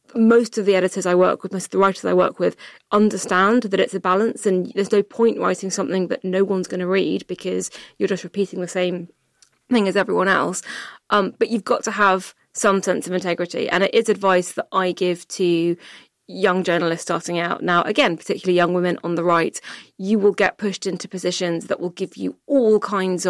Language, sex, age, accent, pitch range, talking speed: English, female, 20-39, British, 175-210 Hz, 215 wpm